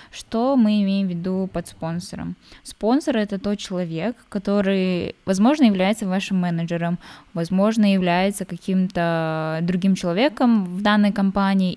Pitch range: 175-205 Hz